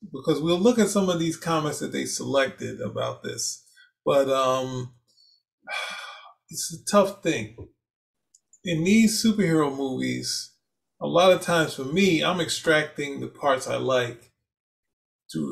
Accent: American